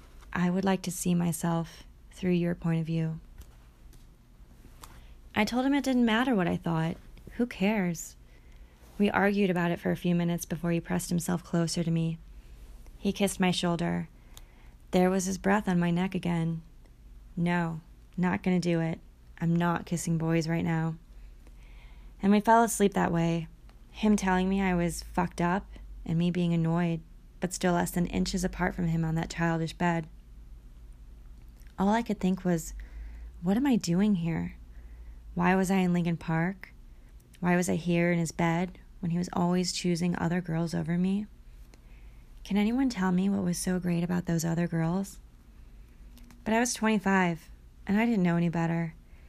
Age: 20-39